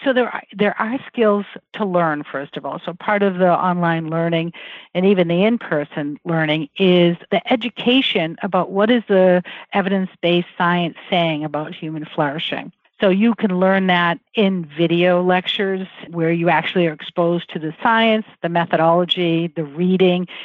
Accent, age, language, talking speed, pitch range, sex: American, 50-69, English, 160 wpm, 170-225 Hz, female